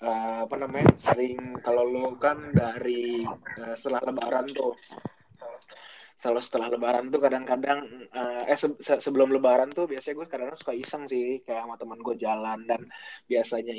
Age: 20-39